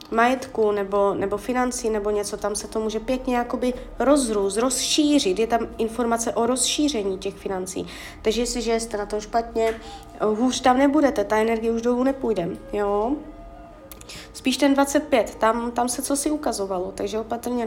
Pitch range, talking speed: 215-260 Hz, 165 wpm